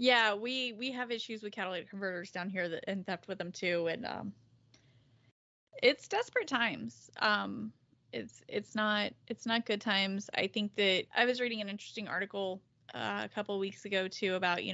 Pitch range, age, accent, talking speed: 185-215 Hz, 20-39, American, 185 wpm